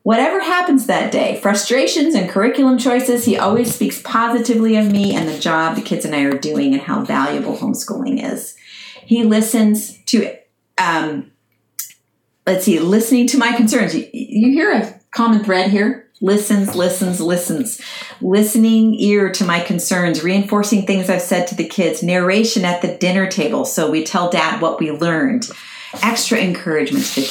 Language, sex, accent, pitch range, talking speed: English, female, American, 195-250 Hz, 165 wpm